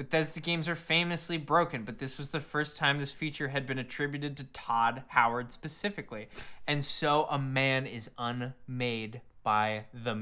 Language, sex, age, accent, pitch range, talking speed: English, male, 20-39, American, 120-165 Hz, 165 wpm